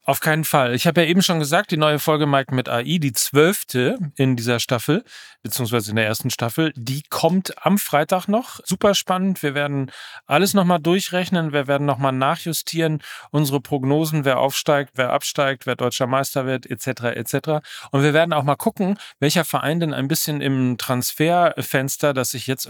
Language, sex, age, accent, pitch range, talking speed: German, male, 40-59, German, 135-175 Hz, 180 wpm